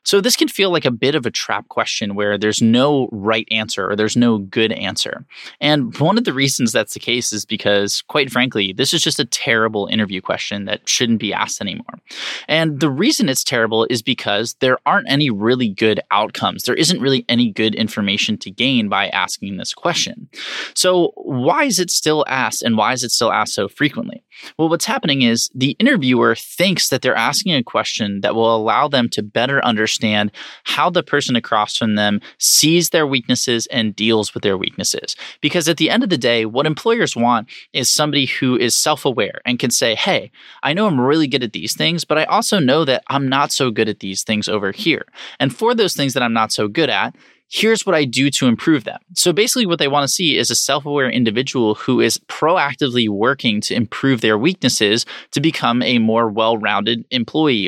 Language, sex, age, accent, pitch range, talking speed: English, male, 20-39, American, 110-150 Hz, 210 wpm